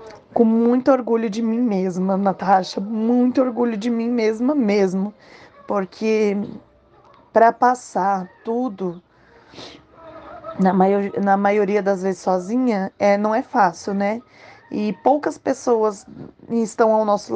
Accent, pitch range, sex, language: Brazilian, 205-235 Hz, female, Portuguese